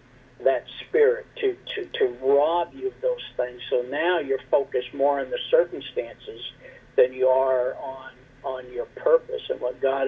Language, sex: English, male